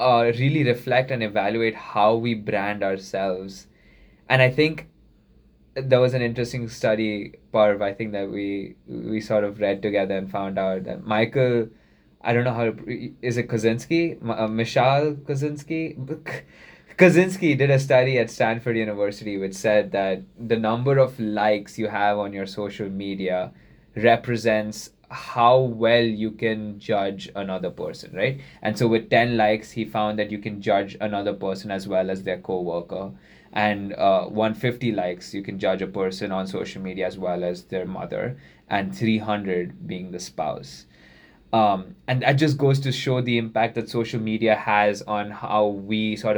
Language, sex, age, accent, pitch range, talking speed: English, male, 20-39, Indian, 100-130 Hz, 170 wpm